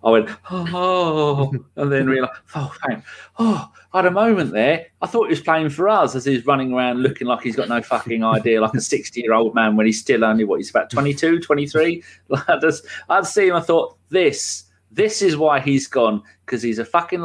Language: English